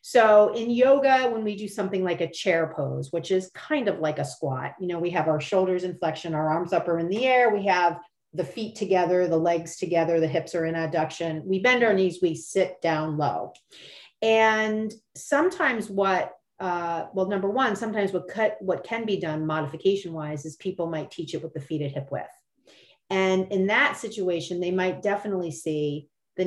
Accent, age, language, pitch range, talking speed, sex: American, 40-59, English, 160-200 Hz, 205 wpm, female